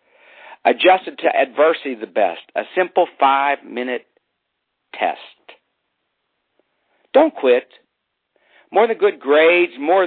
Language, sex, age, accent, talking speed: English, male, 60-79, American, 100 wpm